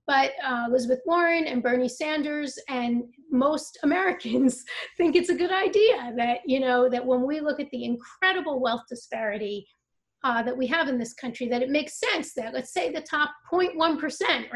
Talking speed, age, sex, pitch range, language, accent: 180 wpm, 30-49, female, 245-310 Hz, English, American